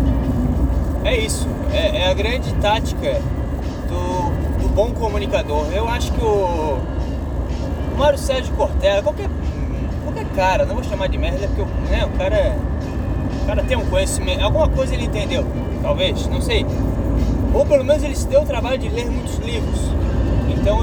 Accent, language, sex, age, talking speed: Brazilian, Portuguese, male, 20-39, 165 wpm